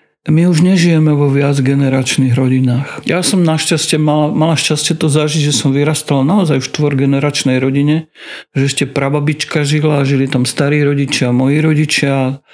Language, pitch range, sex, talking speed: Slovak, 135-155 Hz, male, 165 wpm